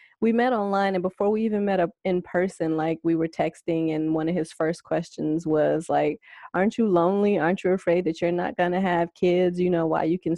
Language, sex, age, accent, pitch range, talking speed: English, female, 20-39, American, 175-225 Hz, 235 wpm